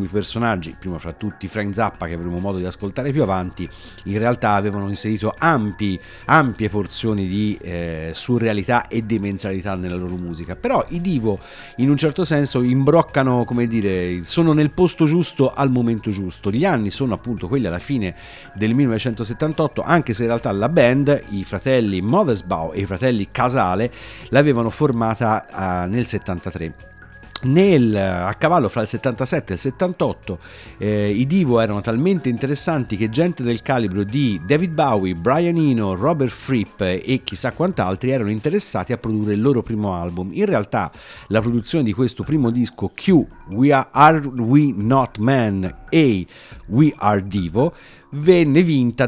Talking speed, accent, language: 160 wpm, native, Italian